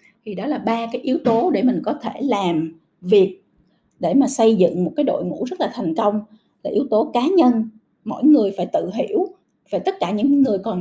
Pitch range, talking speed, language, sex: 190-280 Hz, 235 wpm, Vietnamese, female